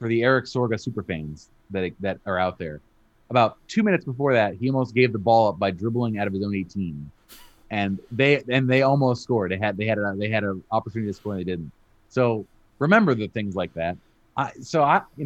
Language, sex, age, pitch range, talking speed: English, male, 30-49, 105-125 Hz, 230 wpm